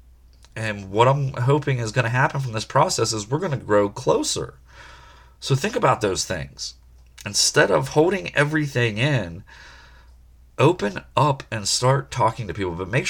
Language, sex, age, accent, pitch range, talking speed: English, male, 30-49, American, 85-120 Hz, 165 wpm